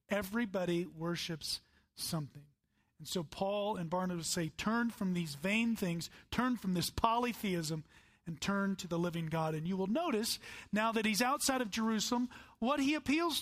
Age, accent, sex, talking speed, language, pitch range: 40-59, American, male, 165 wpm, English, 175-230 Hz